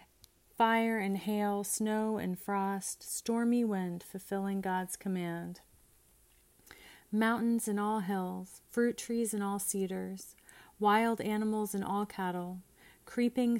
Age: 30-49